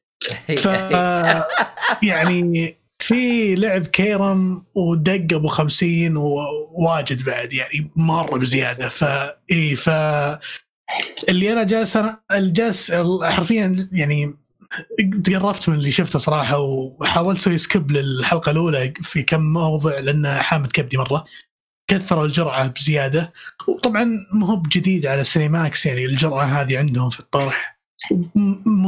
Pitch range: 140-180 Hz